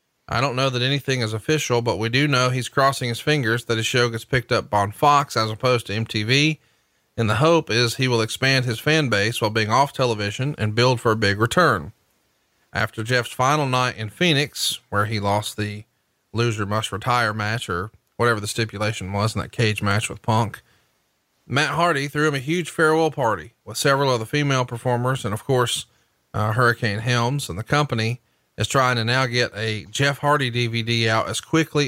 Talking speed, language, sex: 200 wpm, English, male